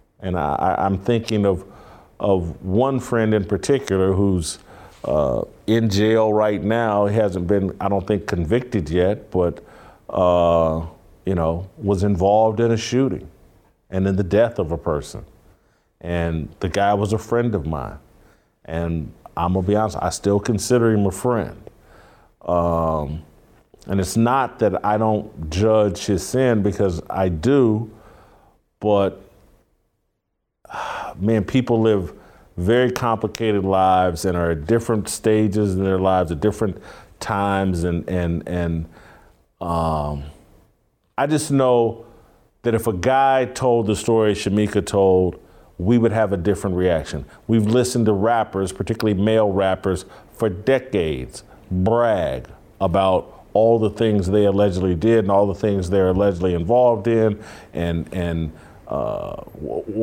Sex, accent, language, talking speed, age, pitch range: male, American, English, 140 wpm, 50-69, 90-110 Hz